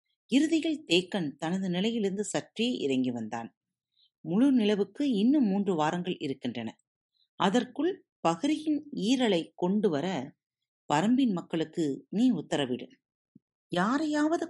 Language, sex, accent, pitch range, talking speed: Tamil, female, native, 155-250 Hz, 95 wpm